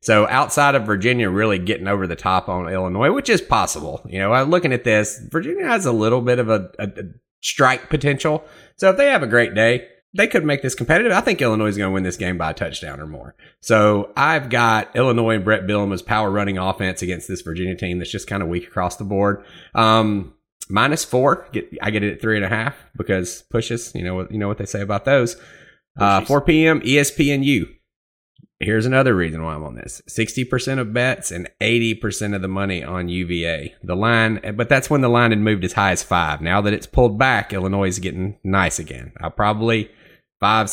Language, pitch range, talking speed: English, 90-120 Hz, 220 wpm